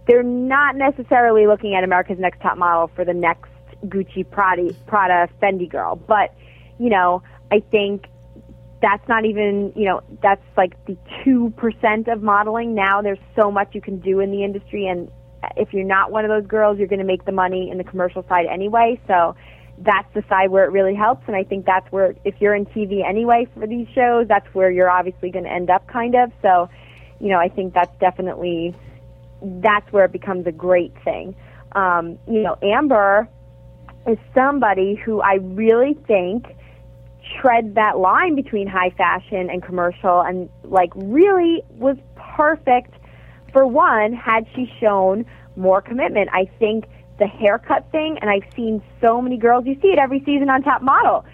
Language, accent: English, American